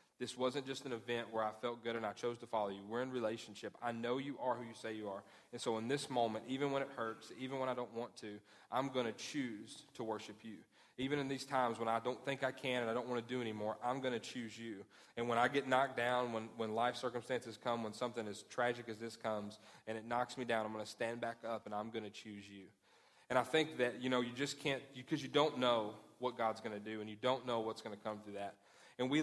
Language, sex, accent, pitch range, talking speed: English, male, American, 110-130 Hz, 280 wpm